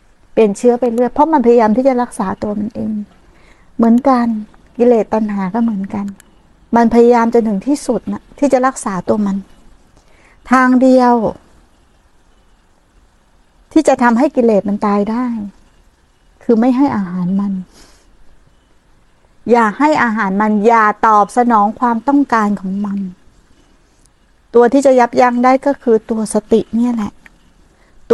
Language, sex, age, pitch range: Thai, female, 60-79, 210-270 Hz